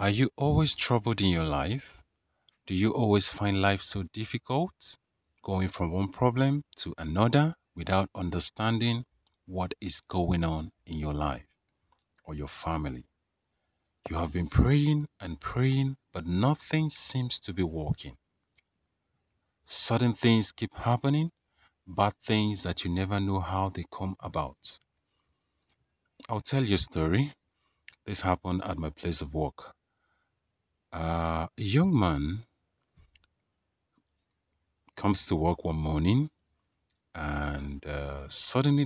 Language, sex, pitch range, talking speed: English, male, 80-115 Hz, 125 wpm